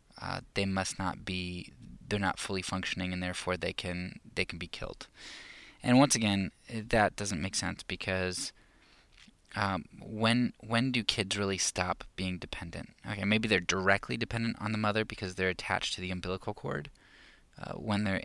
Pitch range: 95-110 Hz